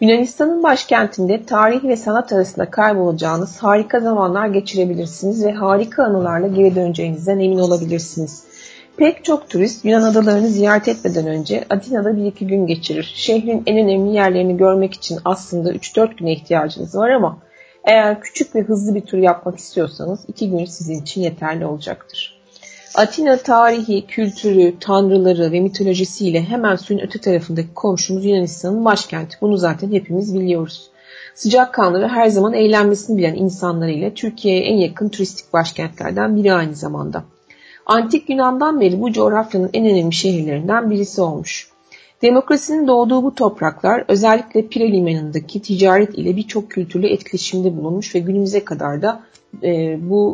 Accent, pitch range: native, 175-215 Hz